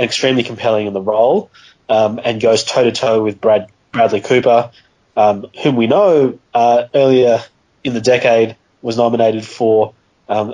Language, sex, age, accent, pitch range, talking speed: English, male, 20-39, Australian, 110-130 Hz, 150 wpm